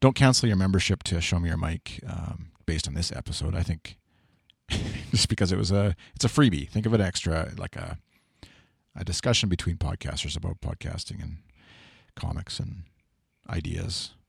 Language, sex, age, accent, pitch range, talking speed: English, male, 40-59, American, 80-105 Hz, 170 wpm